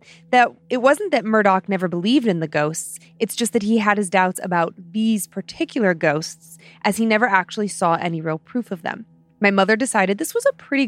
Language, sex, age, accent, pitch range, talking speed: English, female, 20-39, American, 175-215 Hz, 210 wpm